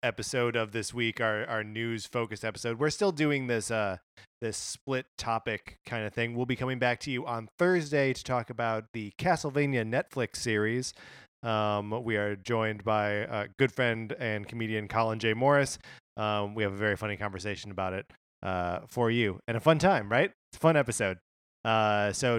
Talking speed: 190 wpm